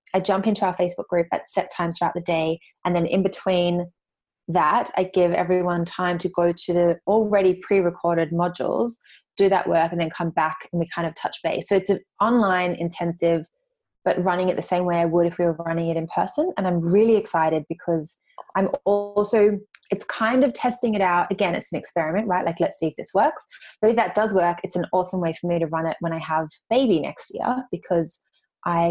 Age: 20-39